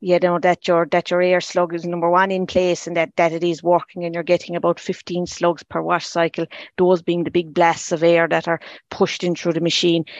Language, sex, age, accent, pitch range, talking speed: English, female, 30-49, Irish, 165-180 Hz, 245 wpm